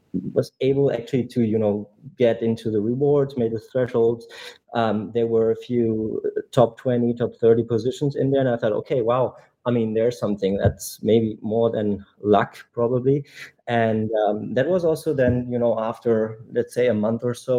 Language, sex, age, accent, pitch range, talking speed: English, male, 30-49, German, 110-125 Hz, 190 wpm